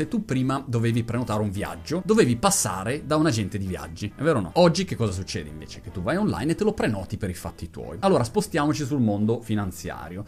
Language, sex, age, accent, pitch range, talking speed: Italian, male, 30-49, native, 110-155 Hz, 230 wpm